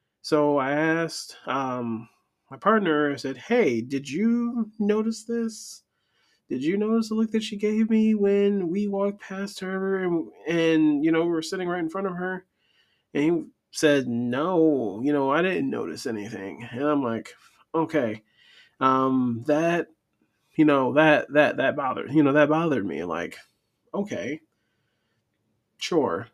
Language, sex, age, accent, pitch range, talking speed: English, male, 30-49, American, 125-170 Hz, 155 wpm